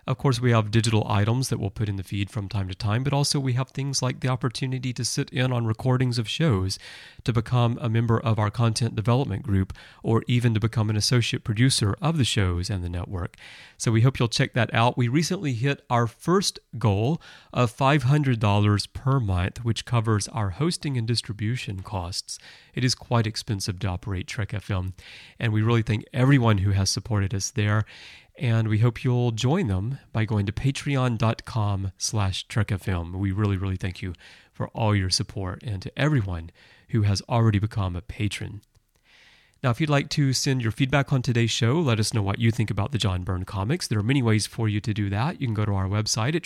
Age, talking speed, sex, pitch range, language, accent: 30-49, 210 wpm, male, 100-130 Hz, English, American